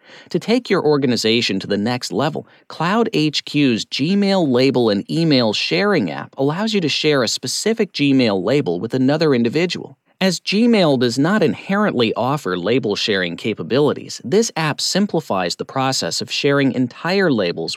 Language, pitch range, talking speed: English, 130-195 Hz, 150 wpm